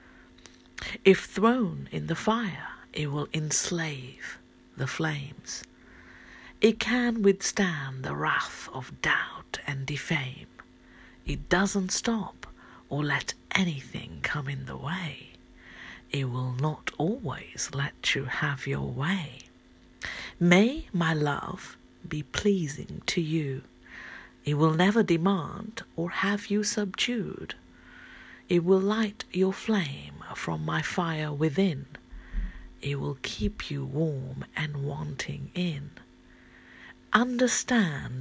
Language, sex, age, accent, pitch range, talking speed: English, female, 50-69, British, 140-190 Hz, 110 wpm